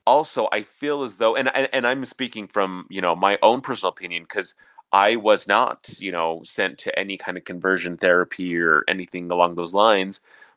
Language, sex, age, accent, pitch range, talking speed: English, male, 30-49, American, 95-130 Hz, 200 wpm